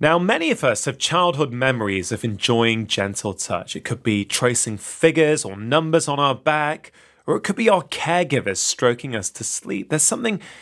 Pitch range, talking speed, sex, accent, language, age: 115-165 Hz, 185 wpm, male, British, English, 20-39